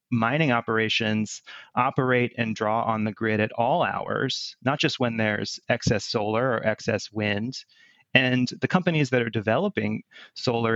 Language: English